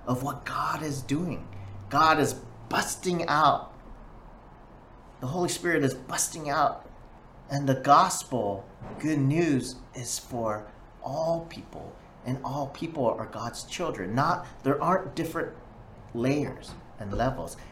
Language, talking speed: English, 125 wpm